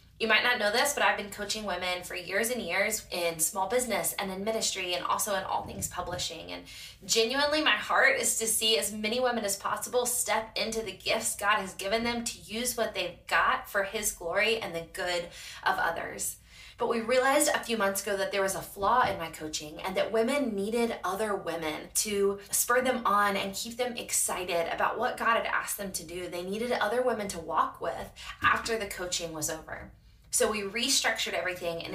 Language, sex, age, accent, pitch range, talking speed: English, female, 20-39, American, 180-230 Hz, 210 wpm